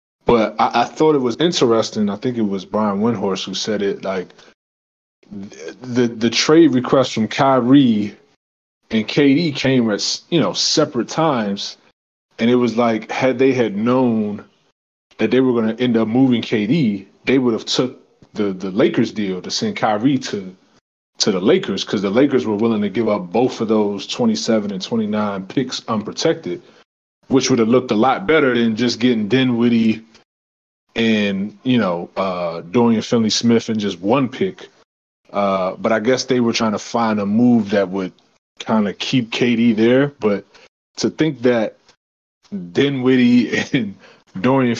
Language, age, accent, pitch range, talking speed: English, 20-39, American, 105-130 Hz, 170 wpm